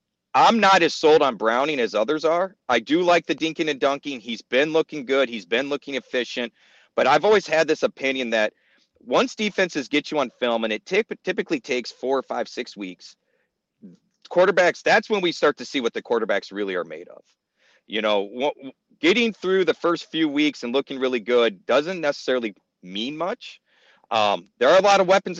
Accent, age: American, 40-59